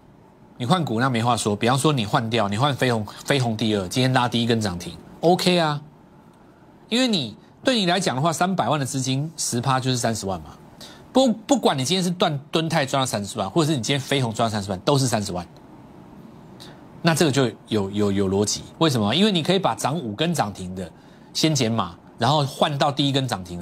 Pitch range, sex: 115-160 Hz, male